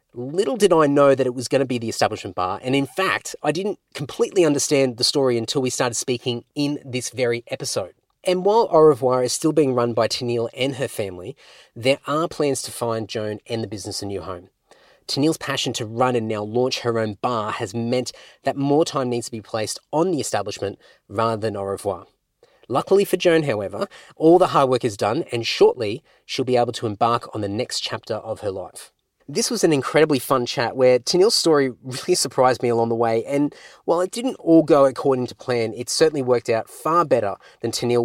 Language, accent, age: English, Australian, 30-49